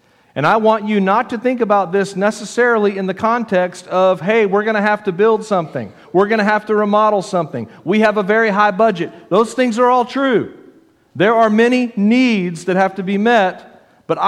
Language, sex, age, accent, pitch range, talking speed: English, male, 50-69, American, 160-210 Hz, 210 wpm